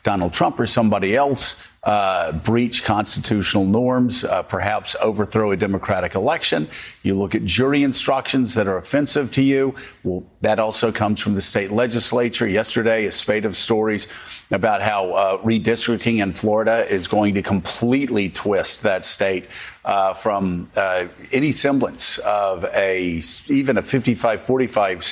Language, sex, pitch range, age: English, male, 100-125 Hz, 50-69